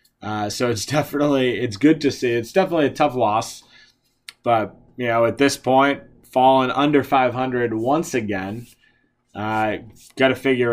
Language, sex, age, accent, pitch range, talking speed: English, male, 20-39, American, 115-150 Hz, 160 wpm